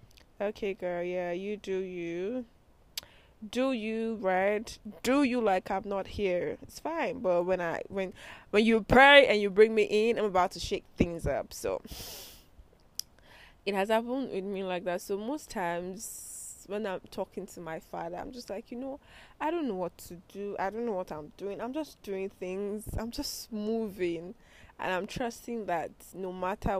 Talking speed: 185 wpm